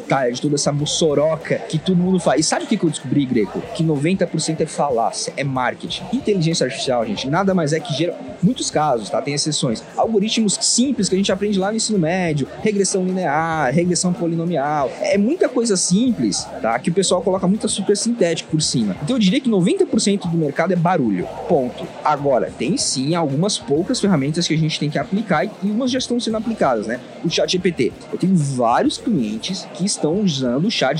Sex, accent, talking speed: male, Brazilian, 200 wpm